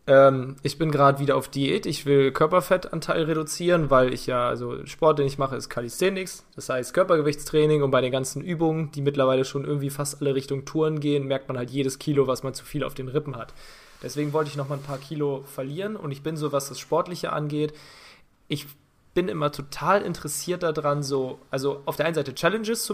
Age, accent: 20-39, German